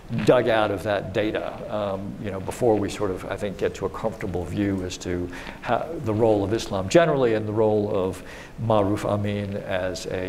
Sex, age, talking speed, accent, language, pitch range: male, 60-79, 205 wpm, American, English, 105-120 Hz